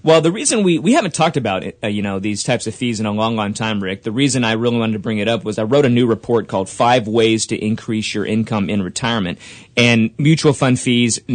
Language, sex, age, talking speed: English, male, 30-49, 270 wpm